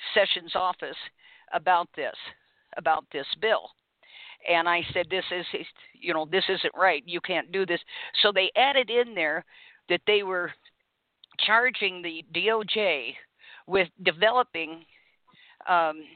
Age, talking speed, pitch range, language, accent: 50-69, 130 wpm, 170-200 Hz, English, American